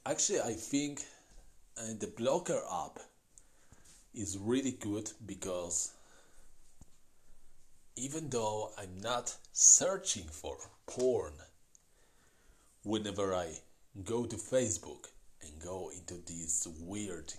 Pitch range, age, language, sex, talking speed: 90-115 Hz, 40-59, English, male, 95 wpm